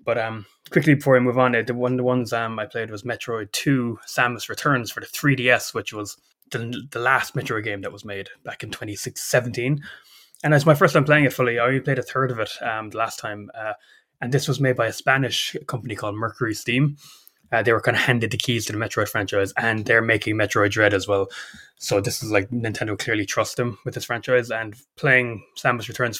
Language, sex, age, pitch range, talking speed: English, male, 20-39, 105-130 Hz, 230 wpm